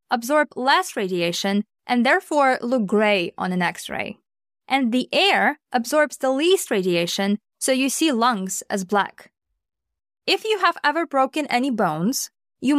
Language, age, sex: English, 20-39, female